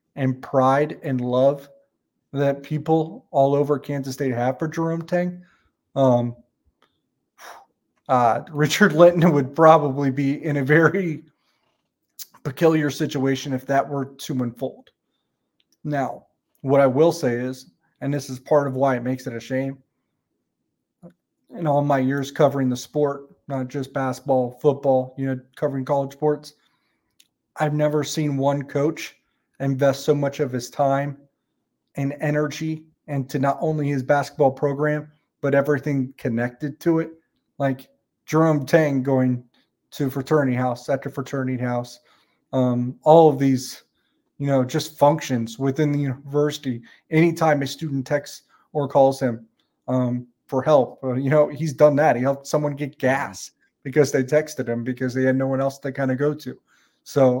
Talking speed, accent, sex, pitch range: 155 wpm, American, male, 130-150 Hz